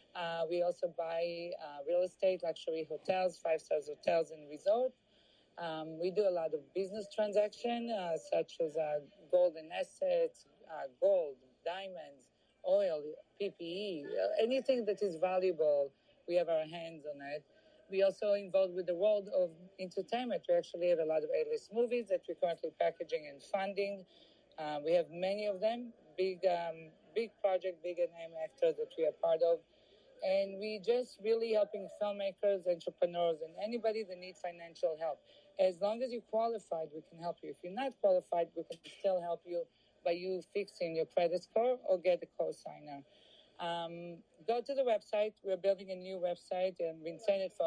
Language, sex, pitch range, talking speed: English, female, 170-215 Hz, 175 wpm